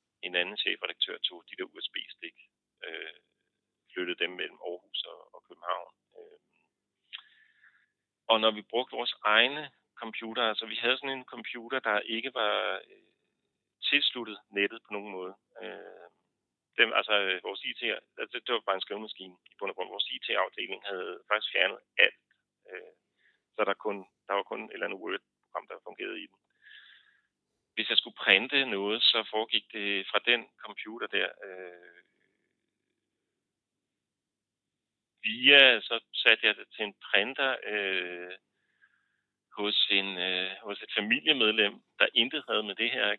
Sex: male